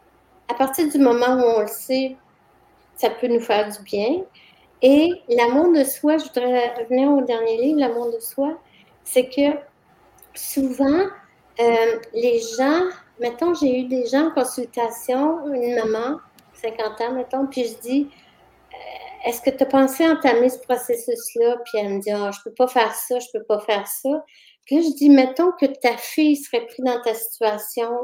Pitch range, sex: 235-295 Hz, female